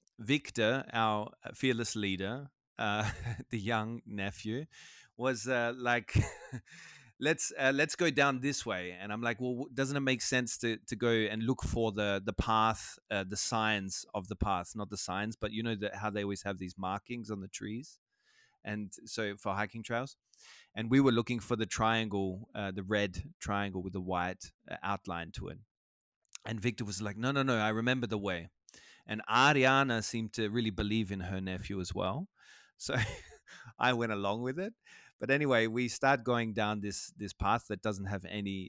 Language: German